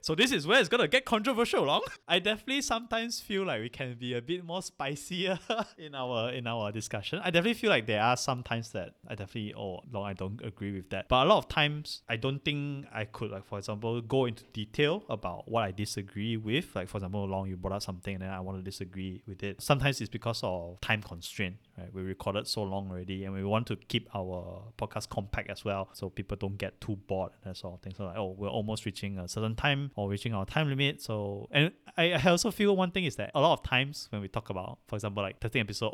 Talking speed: 250 wpm